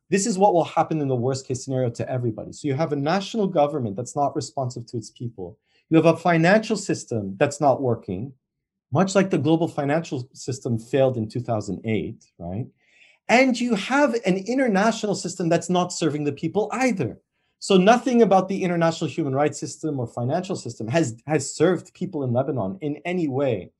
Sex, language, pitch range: male, English, 130-180 Hz